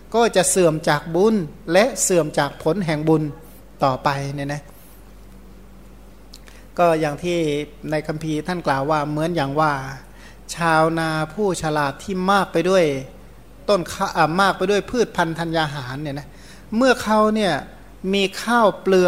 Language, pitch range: Thai, 160-205 Hz